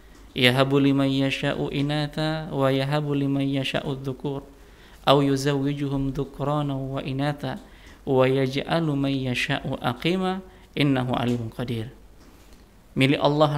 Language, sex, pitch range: Indonesian, male, 130-150 Hz